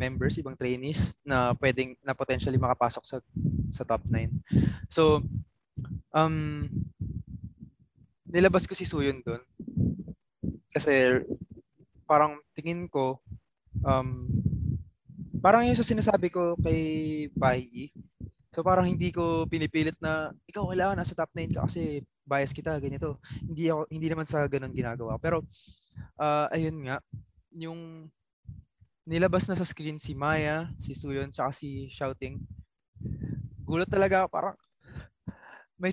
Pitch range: 130-165 Hz